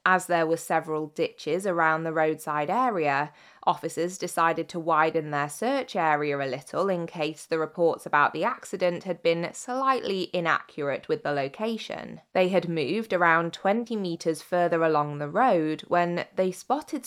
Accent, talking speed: British, 160 wpm